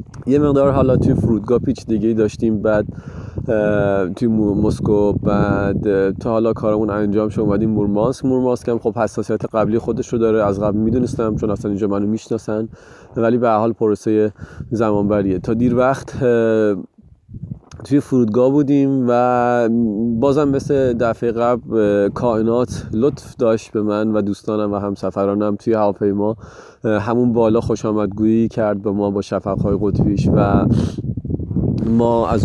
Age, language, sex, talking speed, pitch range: 30-49, Persian, male, 140 wpm, 105-125 Hz